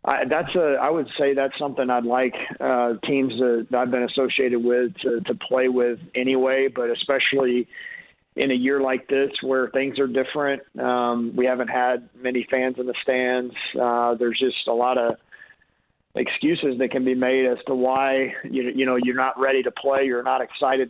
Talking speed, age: 195 wpm, 40-59